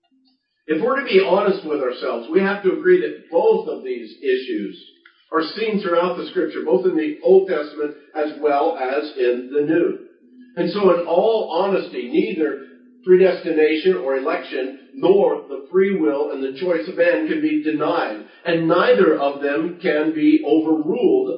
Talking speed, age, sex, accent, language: 170 wpm, 50-69, male, American, English